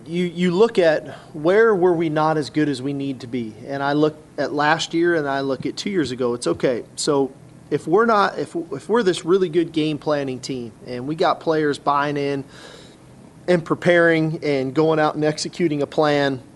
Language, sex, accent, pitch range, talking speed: English, male, American, 135-160 Hz, 210 wpm